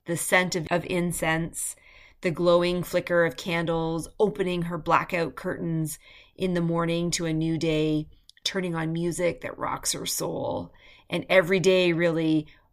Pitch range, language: 160-180 Hz, English